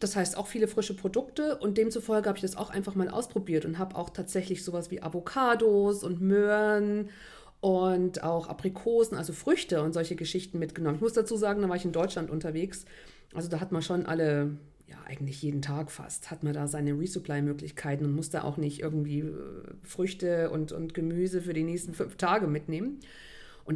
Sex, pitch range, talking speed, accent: female, 165-210 Hz, 190 wpm, German